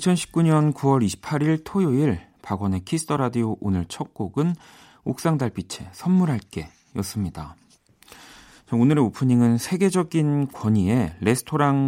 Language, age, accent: Korean, 40-59, native